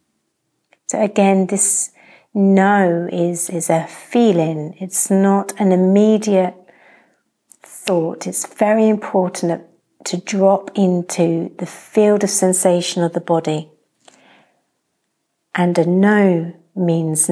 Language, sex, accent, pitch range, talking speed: English, female, British, 170-195 Hz, 105 wpm